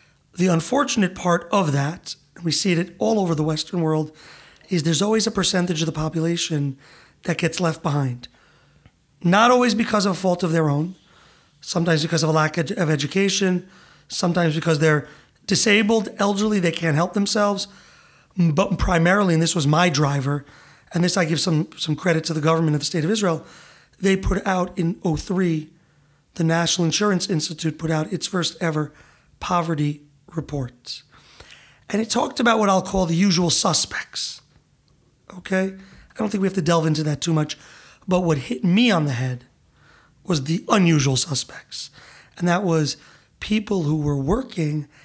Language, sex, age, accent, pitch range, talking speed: English, male, 30-49, American, 155-195 Hz, 170 wpm